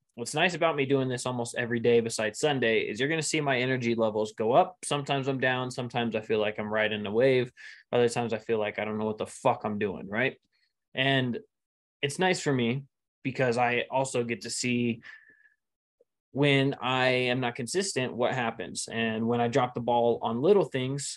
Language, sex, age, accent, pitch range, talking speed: English, male, 20-39, American, 115-135 Hz, 205 wpm